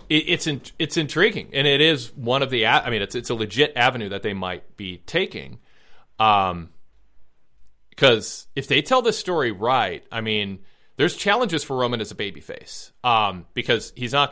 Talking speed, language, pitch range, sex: 180 wpm, English, 100-125 Hz, male